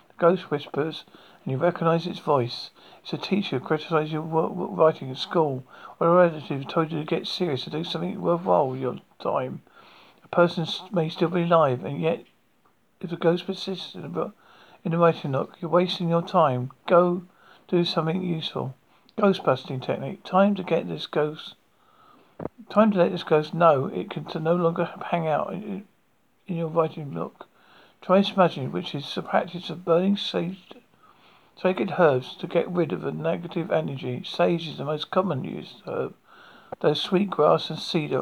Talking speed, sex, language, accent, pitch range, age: 175 wpm, male, English, British, 155-185 Hz, 50-69